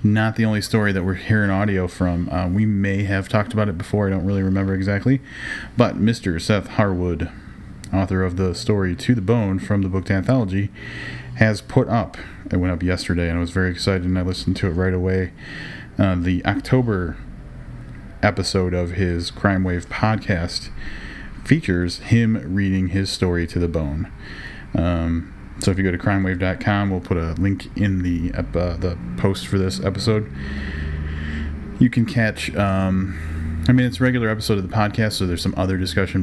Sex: male